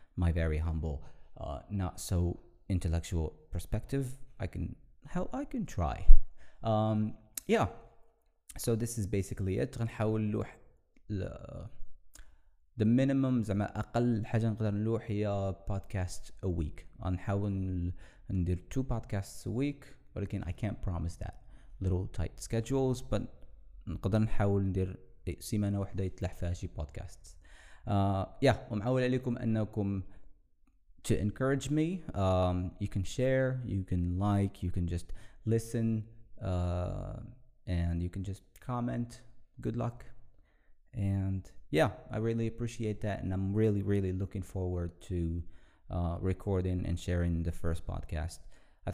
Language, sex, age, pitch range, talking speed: English, male, 20-39, 90-115 Hz, 125 wpm